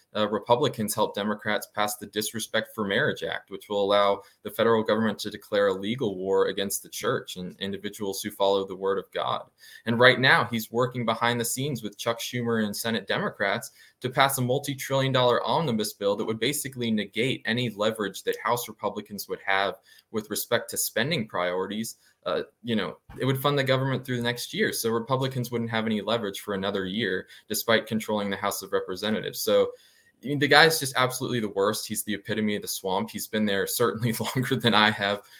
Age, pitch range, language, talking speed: 20-39, 105-130 Hz, English, 200 wpm